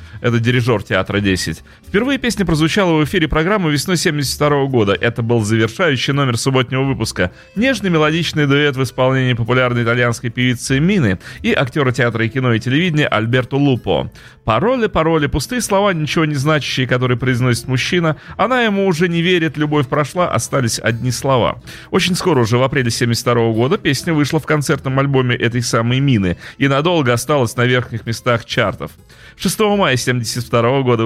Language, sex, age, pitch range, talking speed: Russian, male, 30-49, 120-150 Hz, 160 wpm